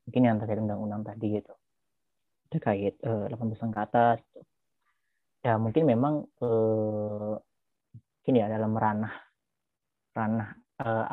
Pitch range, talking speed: 105-120 Hz, 110 wpm